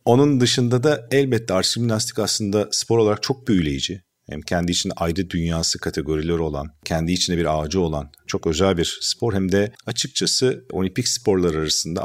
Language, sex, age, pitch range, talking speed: Turkish, male, 50-69, 85-115 Hz, 160 wpm